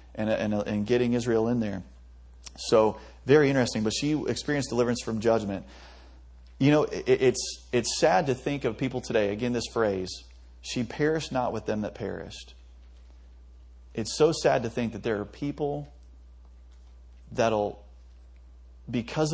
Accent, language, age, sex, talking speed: American, English, 30-49, male, 150 wpm